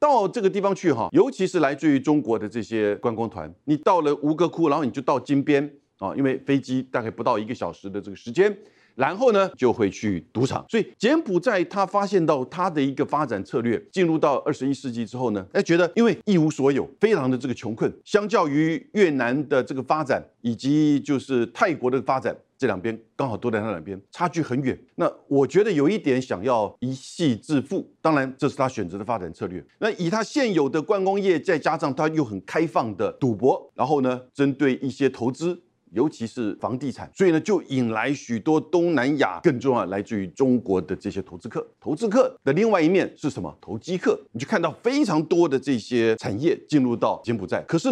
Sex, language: male, Chinese